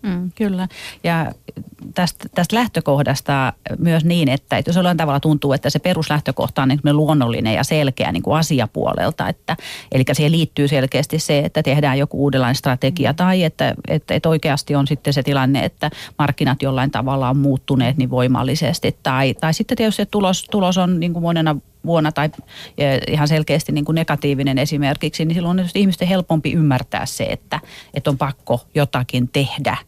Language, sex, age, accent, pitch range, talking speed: Finnish, female, 30-49, native, 135-160 Hz, 165 wpm